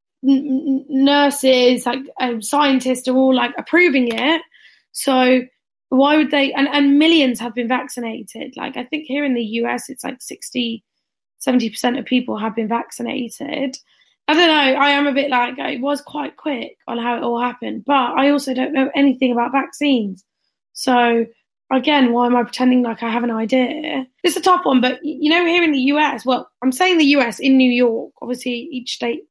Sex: female